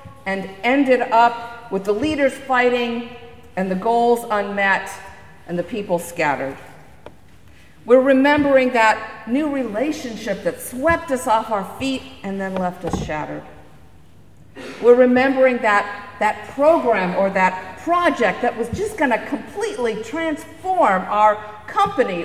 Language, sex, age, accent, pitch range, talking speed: English, female, 50-69, American, 180-255 Hz, 130 wpm